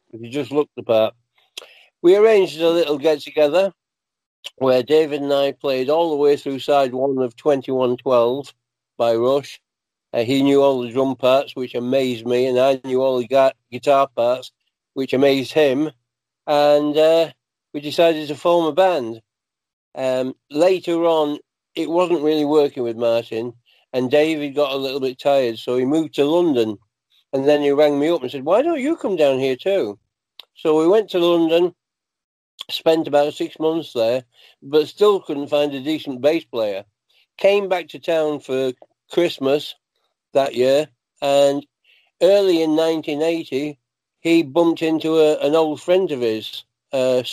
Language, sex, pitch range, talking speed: English, male, 130-160 Hz, 160 wpm